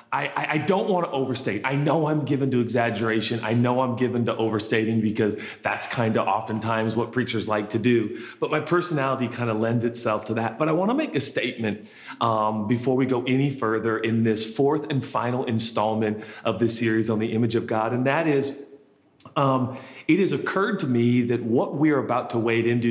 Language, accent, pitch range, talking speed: English, American, 115-135 Hz, 210 wpm